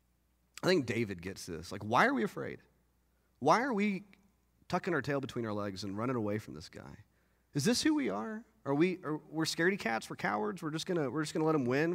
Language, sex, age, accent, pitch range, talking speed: English, male, 30-49, American, 125-200 Hz, 225 wpm